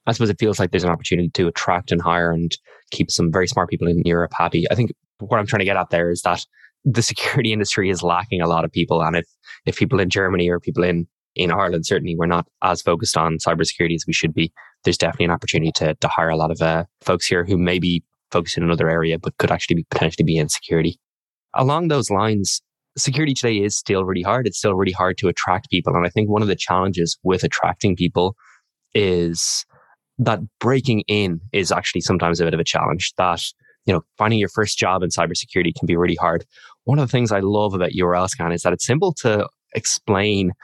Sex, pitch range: male, 85-110 Hz